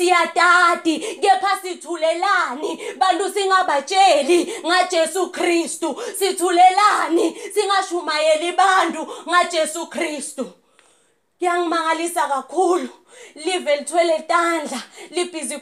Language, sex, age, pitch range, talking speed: English, female, 30-49, 330-390 Hz, 80 wpm